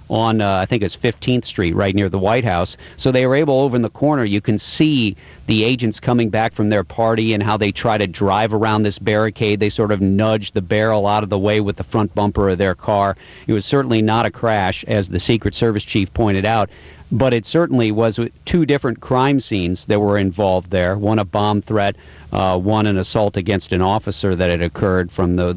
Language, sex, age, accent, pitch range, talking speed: English, male, 40-59, American, 95-115 Hz, 230 wpm